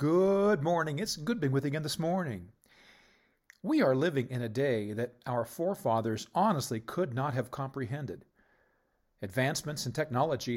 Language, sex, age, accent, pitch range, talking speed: English, male, 40-59, American, 115-155 Hz, 155 wpm